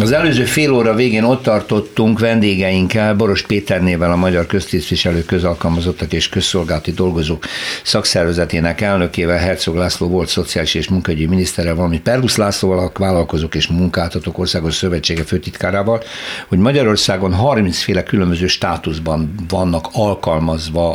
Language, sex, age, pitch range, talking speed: Hungarian, male, 60-79, 85-105 Hz, 125 wpm